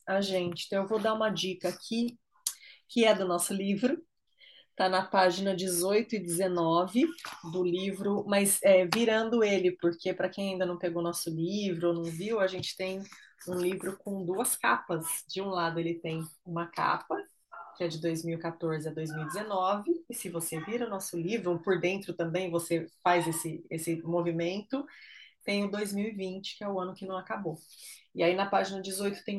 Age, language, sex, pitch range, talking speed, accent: 20-39, Portuguese, female, 175-205 Hz, 180 wpm, Brazilian